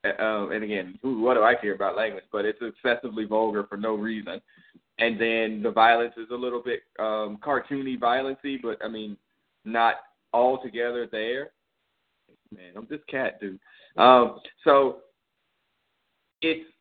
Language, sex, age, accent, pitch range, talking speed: English, male, 20-39, American, 115-135 Hz, 150 wpm